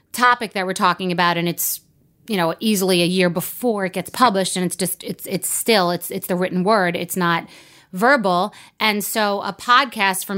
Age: 30-49